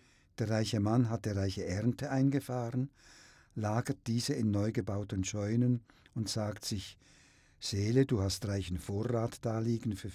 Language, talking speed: German, 140 wpm